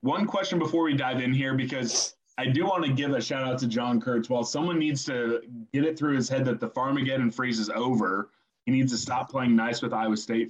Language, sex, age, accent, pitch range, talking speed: English, male, 20-39, American, 110-135 Hz, 245 wpm